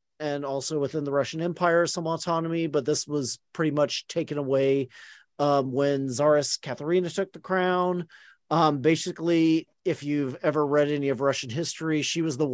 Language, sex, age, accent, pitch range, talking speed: English, male, 40-59, American, 130-175 Hz, 165 wpm